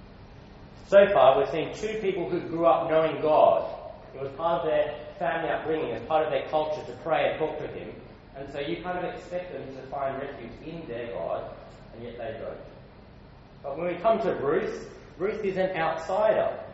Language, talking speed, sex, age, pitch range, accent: English, 200 wpm, male, 30-49, 130-180 Hz, Australian